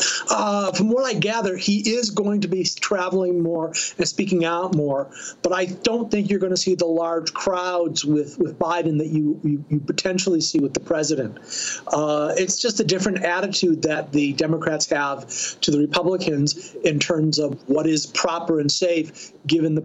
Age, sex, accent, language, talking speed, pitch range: 40-59, male, American, English, 185 wpm, 155-185 Hz